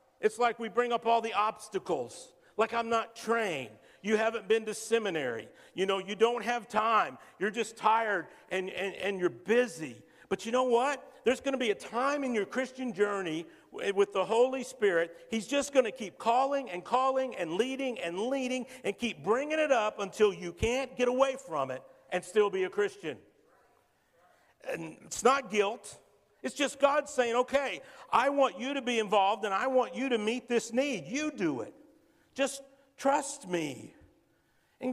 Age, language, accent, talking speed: 50-69, English, American, 185 wpm